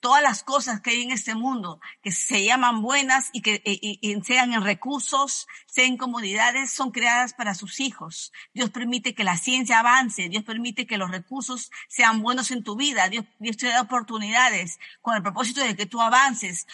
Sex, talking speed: female, 195 wpm